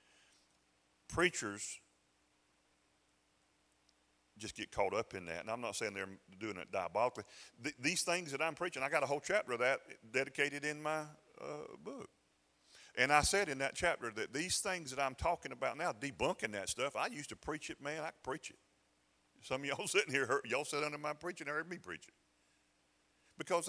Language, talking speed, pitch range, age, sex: English, 195 wpm, 115-155 Hz, 40-59, male